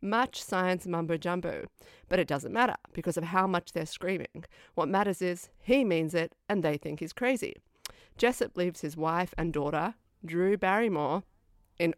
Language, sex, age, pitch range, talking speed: English, female, 30-49, 155-195 Hz, 165 wpm